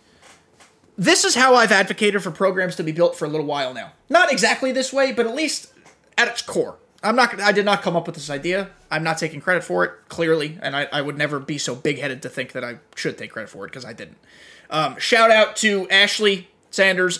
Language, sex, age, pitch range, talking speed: English, male, 20-39, 170-225 Hz, 235 wpm